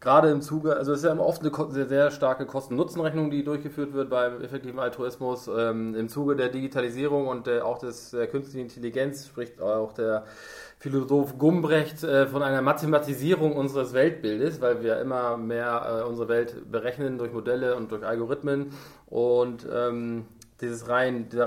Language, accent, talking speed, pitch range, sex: German, German, 170 wpm, 120-145 Hz, male